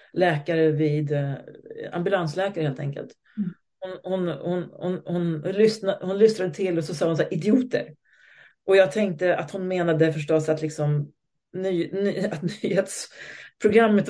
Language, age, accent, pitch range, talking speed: Swedish, 40-59, native, 155-195 Hz, 145 wpm